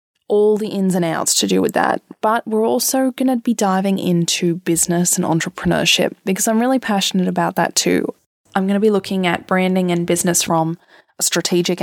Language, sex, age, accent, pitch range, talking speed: English, female, 20-39, Australian, 175-210 Hz, 200 wpm